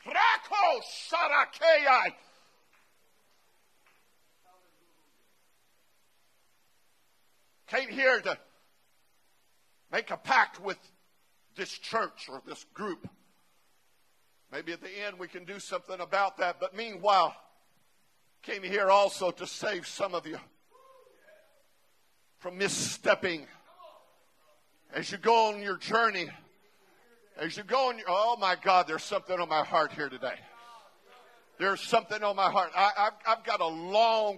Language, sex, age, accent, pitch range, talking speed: English, male, 50-69, American, 175-225 Hz, 115 wpm